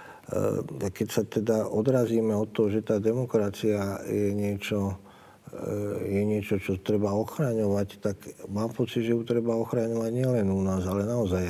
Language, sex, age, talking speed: Slovak, male, 50-69, 155 wpm